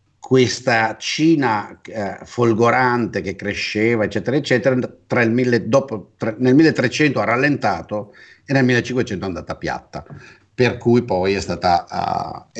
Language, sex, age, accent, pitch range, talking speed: Italian, male, 50-69, native, 110-140 Hz, 140 wpm